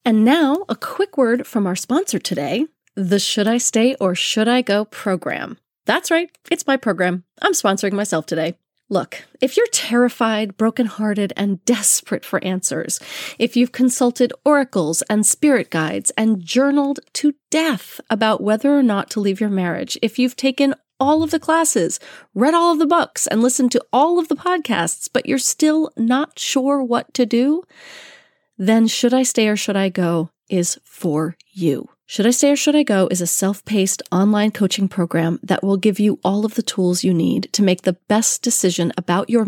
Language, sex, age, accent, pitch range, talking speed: English, female, 30-49, American, 195-270 Hz, 185 wpm